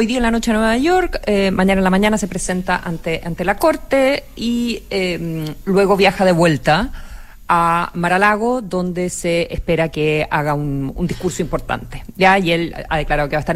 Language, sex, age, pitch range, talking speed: Spanish, female, 40-59, 160-200 Hz, 205 wpm